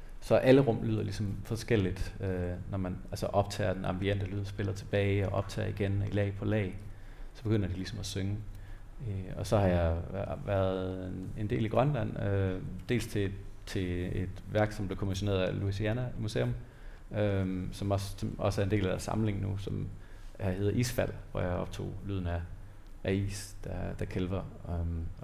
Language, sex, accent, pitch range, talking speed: Danish, male, native, 95-105 Hz, 185 wpm